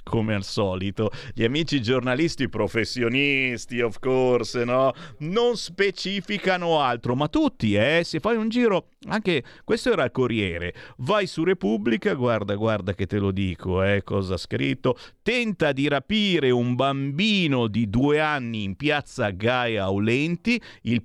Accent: native